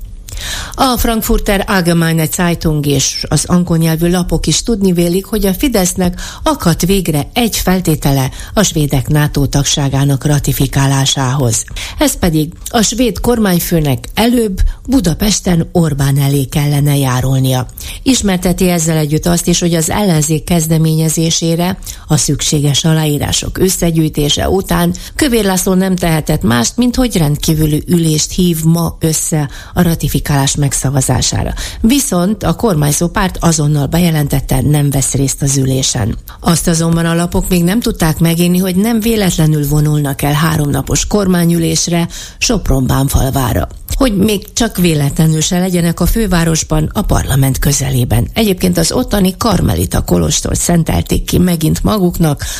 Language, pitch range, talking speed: Hungarian, 140-180 Hz, 125 wpm